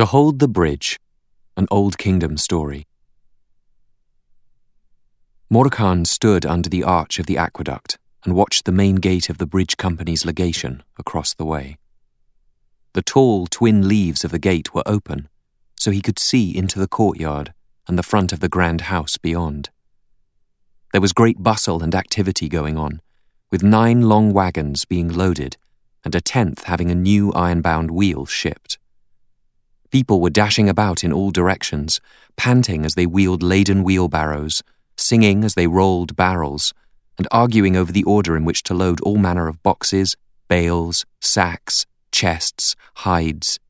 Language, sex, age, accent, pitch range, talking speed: English, male, 30-49, British, 85-100 Hz, 150 wpm